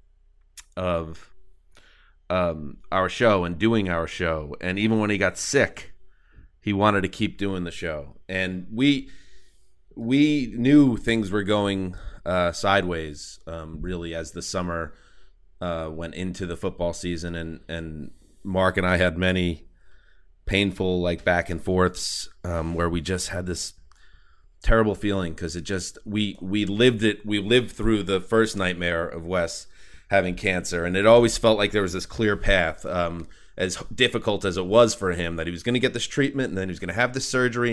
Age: 30-49